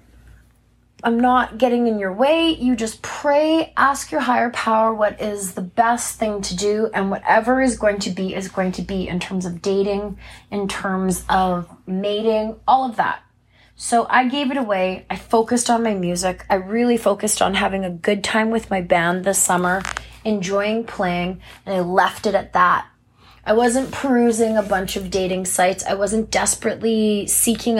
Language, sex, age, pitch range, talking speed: English, female, 20-39, 190-230 Hz, 180 wpm